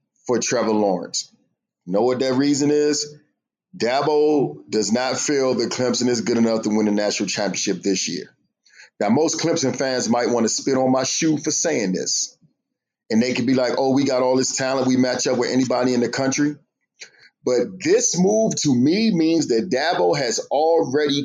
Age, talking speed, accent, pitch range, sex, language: 40-59, 190 wpm, American, 125-165 Hz, male, English